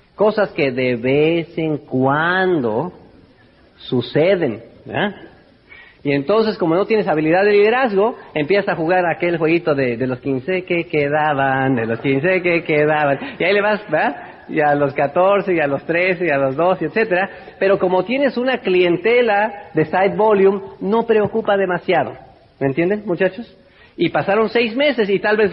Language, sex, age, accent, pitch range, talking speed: Spanish, male, 40-59, Mexican, 155-205 Hz, 170 wpm